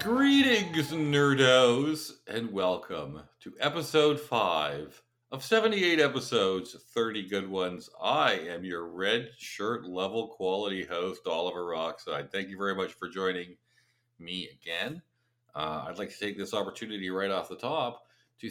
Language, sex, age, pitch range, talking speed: English, male, 50-69, 95-145 Hz, 140 wpm